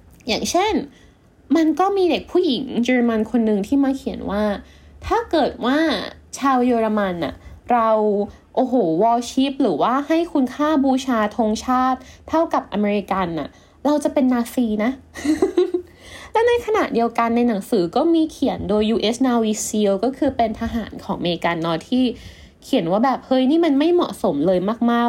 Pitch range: 210-285 Hz